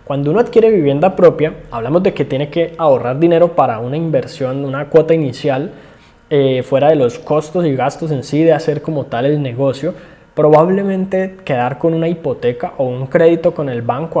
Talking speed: 185 wpm